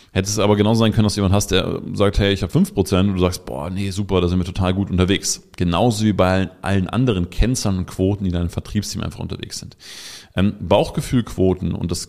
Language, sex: German, male